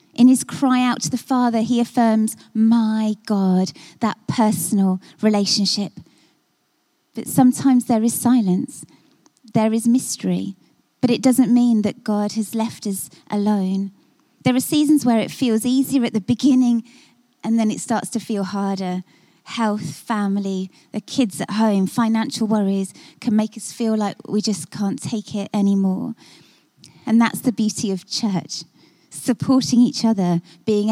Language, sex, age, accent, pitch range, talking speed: English, female, 20-39, British, 200-245 Hz, 150 wpm